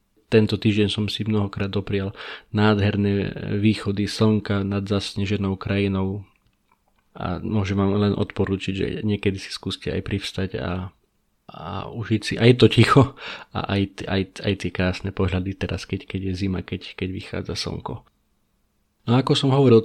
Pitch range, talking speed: 100-110 Hz, 155 wpm